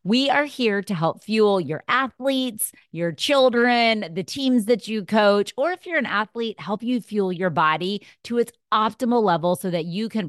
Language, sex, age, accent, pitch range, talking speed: English, female, 30-49, American, 170-230 Hz, 195 wpm